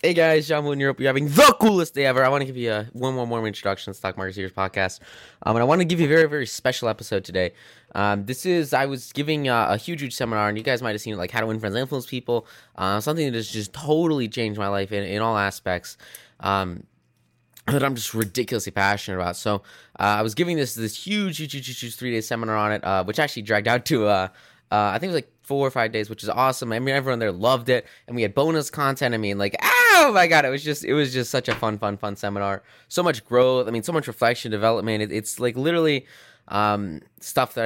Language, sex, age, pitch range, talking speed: English, male, 20-39, 100-135 Hz, 265 wpm